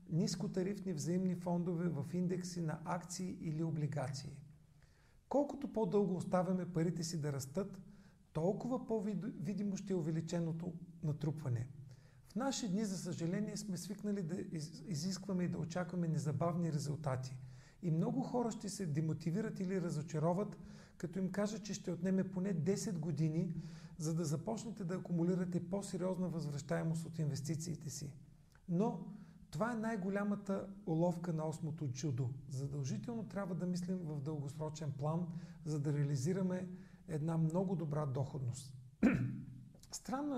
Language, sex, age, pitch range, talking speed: Bulgarian, male, 40-59, 155-190 Hz, 130 wpm